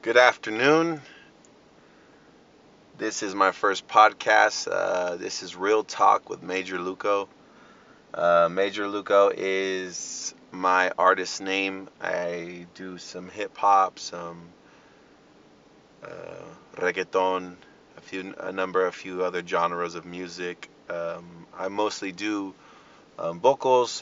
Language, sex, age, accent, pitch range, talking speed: English, male, 30-49, American, 90-95 Hz, 115 wpm